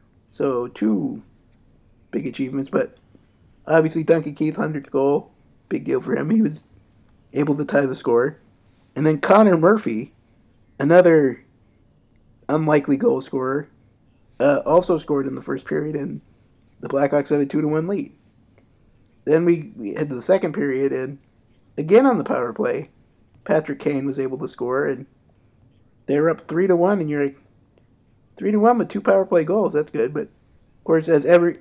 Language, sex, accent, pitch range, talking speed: English, male, American, 115-160 Hz, 160 wpm